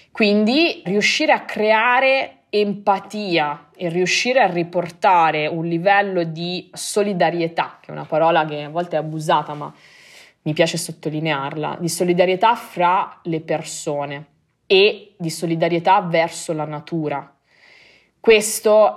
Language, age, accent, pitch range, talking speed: Italian, 20-39, native, 155-190 Hz, 120 wpm